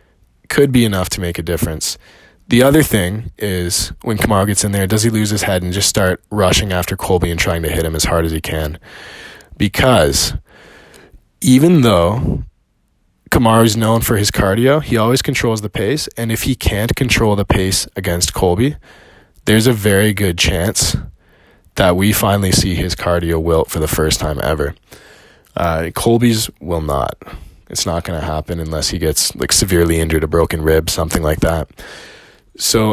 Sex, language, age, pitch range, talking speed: male, English, 20-39, 85-115 Hz, 180 wpm